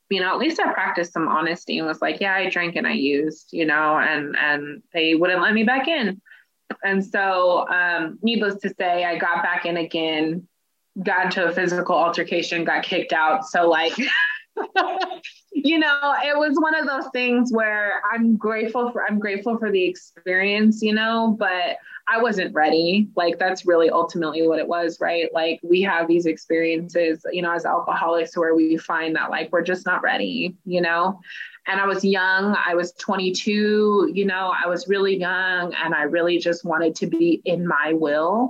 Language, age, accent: English, 20-39, American